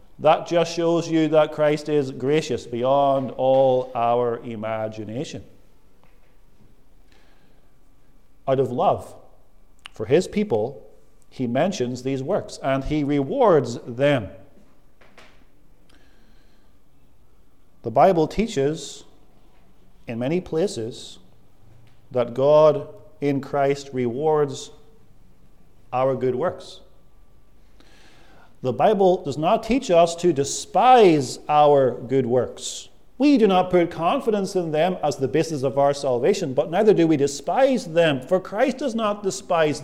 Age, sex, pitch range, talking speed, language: 40-59, male, 130-180 Hz, 115 wpm, English